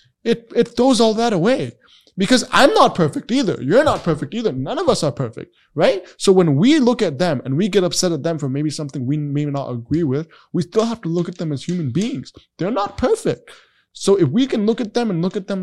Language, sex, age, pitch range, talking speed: English, male, 20-39, 145-200 Hz, 250 wpm